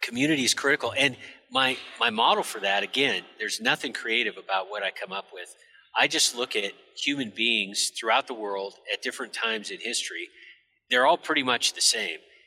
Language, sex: English, male